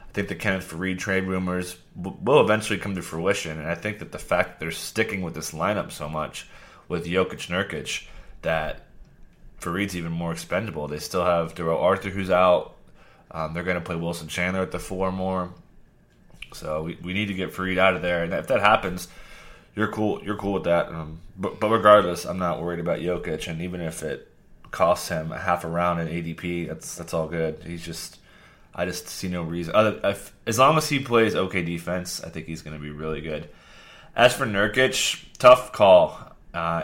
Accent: American